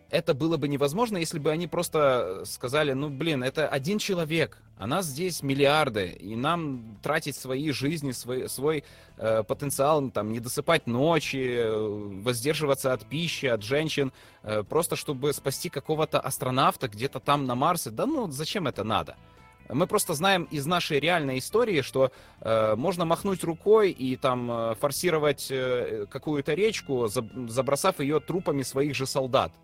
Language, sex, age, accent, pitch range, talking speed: Russian, male, 30-49, native, 115-155 Hz, 150 wpm